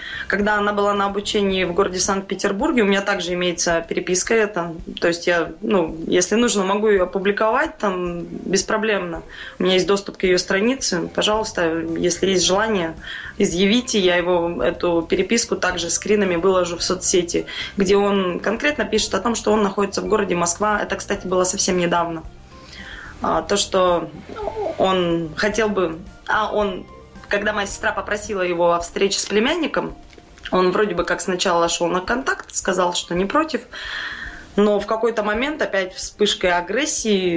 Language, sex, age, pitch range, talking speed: Russian, female, 20-39, 175-210 Hz, 155 wpm